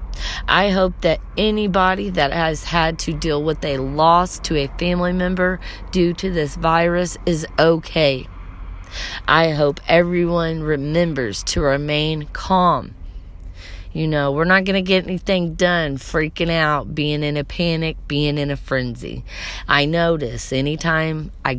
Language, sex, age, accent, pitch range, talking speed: English, female, 30-49, American, 125-170 Hz, 145 wpm